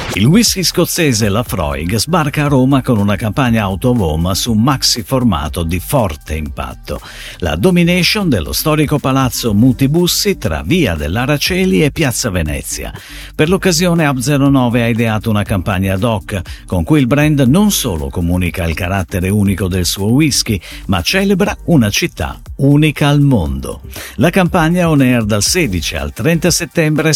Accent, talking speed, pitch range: native, 145 wpm, 100-155 Hz